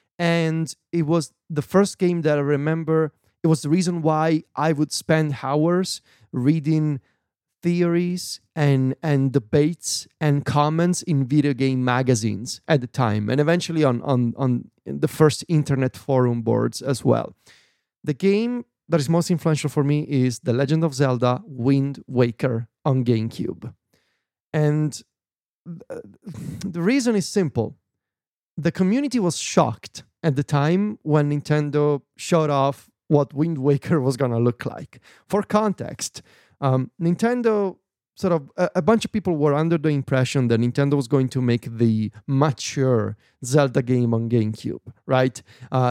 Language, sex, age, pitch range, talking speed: English, male, 30-49, 130-170 Hz, 150 wpm